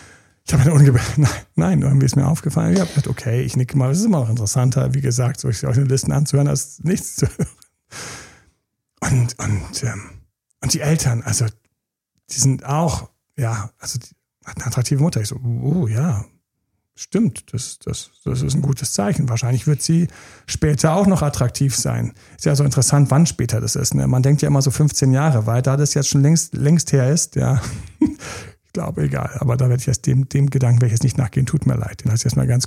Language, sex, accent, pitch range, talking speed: German, male, German, 120-150 Hz, 220 wpm